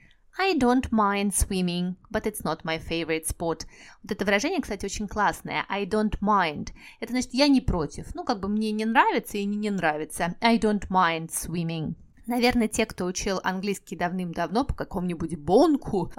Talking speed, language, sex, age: 170 wpm, Russian, female, 20-39